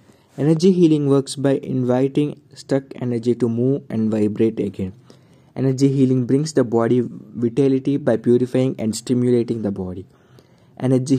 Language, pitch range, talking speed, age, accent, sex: English, 115-135 Hz, 135 wpm, 20-39, Indian, male